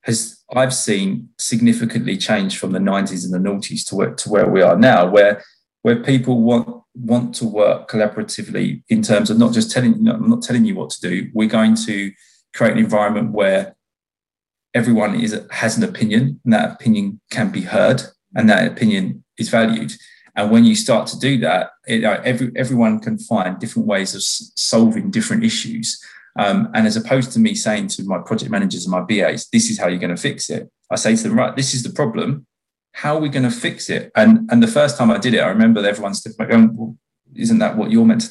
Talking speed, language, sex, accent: 220 wpm, English, male, British